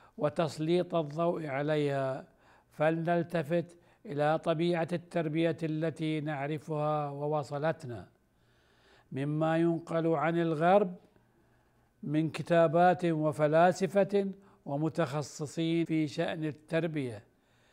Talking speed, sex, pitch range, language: 70 wpm, male, 150-175 Hz, Arabic